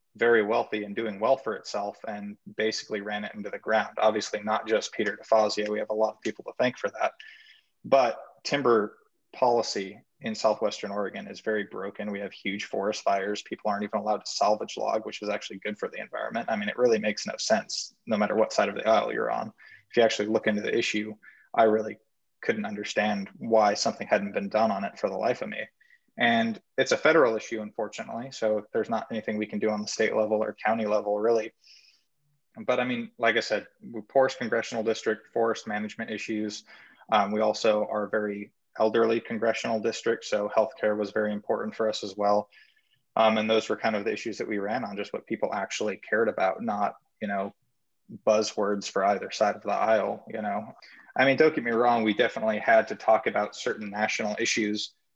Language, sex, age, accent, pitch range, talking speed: English, male, 20-39, American, 105-115 Hz, 205 wpm